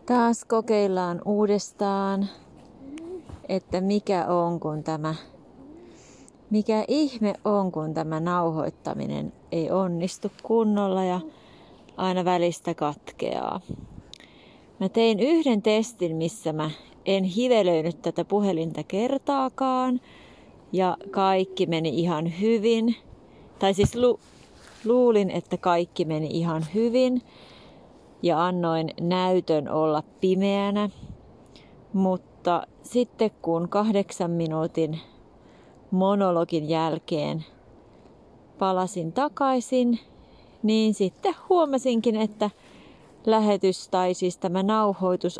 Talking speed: 90 wpm